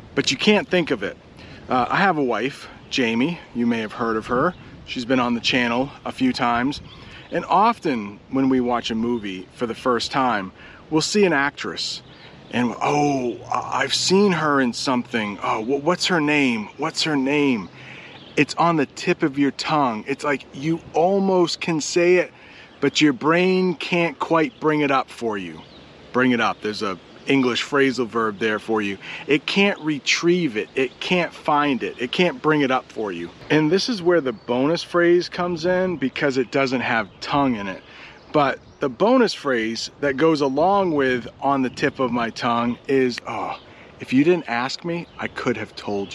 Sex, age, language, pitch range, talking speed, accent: male, 40-59, English, 125-170 Hz, 190 wpm, American